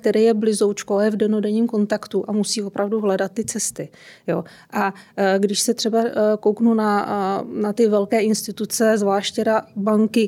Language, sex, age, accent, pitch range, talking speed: Czech, female, 30-49, native, 200-225 Hz, 150 wpm